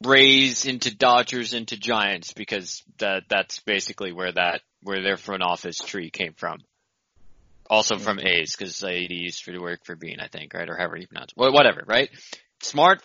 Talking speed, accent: 180 wpm, American